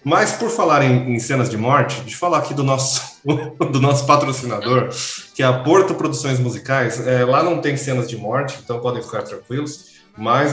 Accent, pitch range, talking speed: Brazilian, 120-140 Hz, 200 wpm